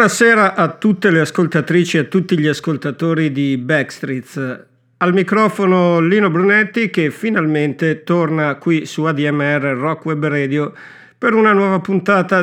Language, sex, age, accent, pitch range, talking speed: Italian, male, 50-69, native, 140-175 Hz, 140 wpm